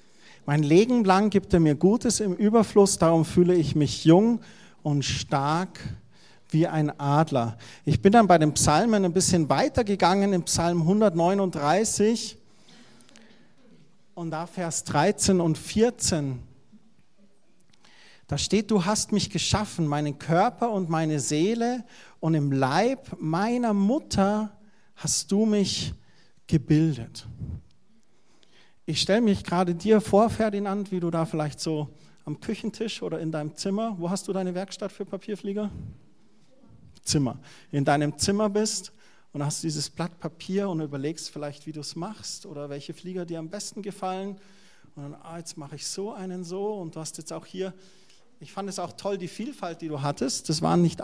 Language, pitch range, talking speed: German, 155-200 Hz, 160 wpm